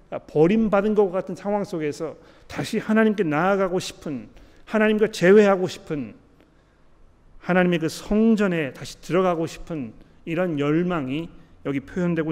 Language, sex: Korean, male